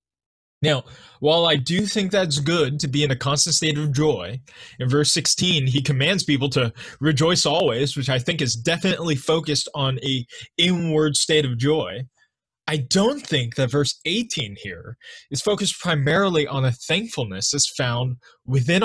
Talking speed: 165 wpm